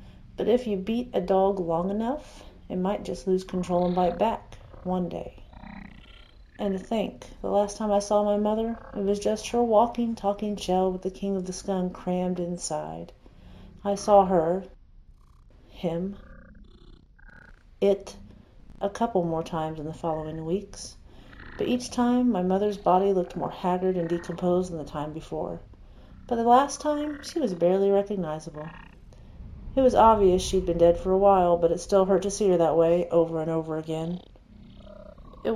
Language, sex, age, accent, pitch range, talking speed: English, female, 40-59, American, 165-210 Hz, 170 wpm